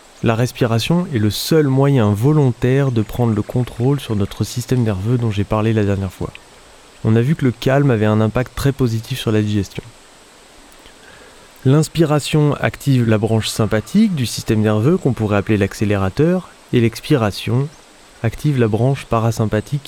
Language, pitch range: French, 110-140 Hz